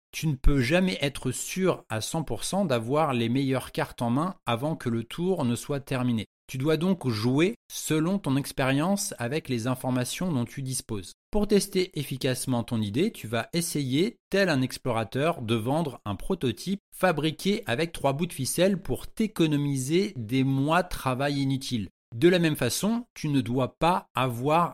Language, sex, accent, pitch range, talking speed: French, male, French, 125-170 Hz, 170 wpm